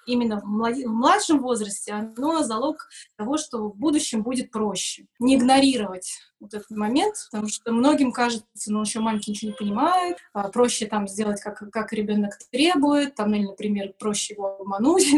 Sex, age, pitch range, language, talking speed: female, 20-39, 210-270 Hz, Russian, 175 wpm